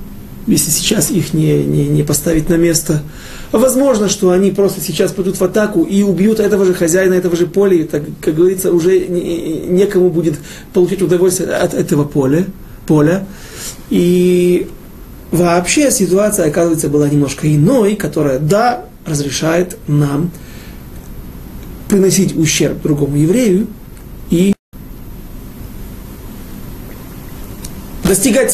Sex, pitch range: male, 150-195 Hz